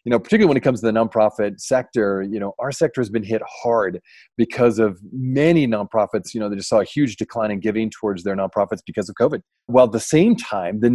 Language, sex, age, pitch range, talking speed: English, male, 30-49, 110-145 Hz, 240 wpm